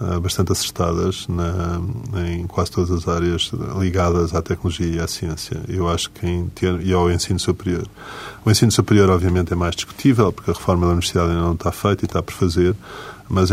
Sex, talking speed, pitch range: male, 195 wpm, 85-105 Hz